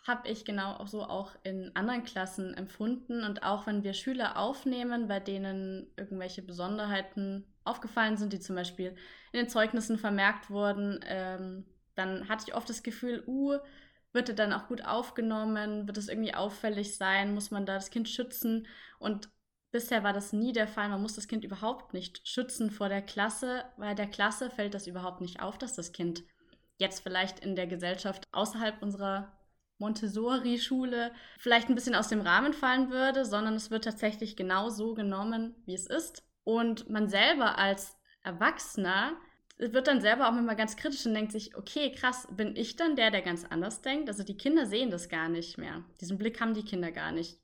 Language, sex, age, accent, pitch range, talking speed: German, female, 10-29, German, 195-235 Hz, 185 wpm